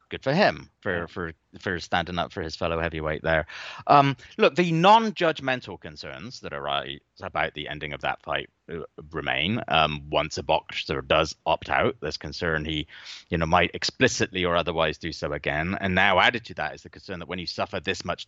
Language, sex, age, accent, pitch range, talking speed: English, male, 30-49, British, 85-125 Hz, 195 wpm